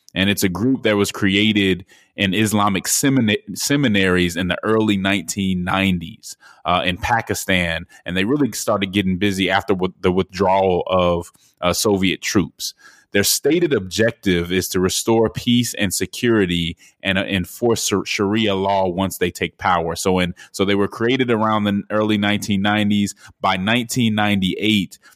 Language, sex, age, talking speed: English, male, 20-39, 150 wpm